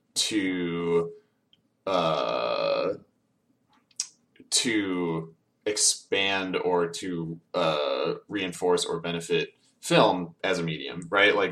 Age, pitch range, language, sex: 20-39, 85-110 Hz, English, male